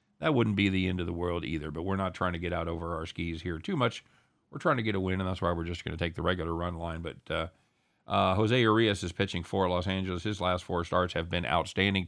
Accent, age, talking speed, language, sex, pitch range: American, 50-69, 285 wpm, English, male, 90-120 Hz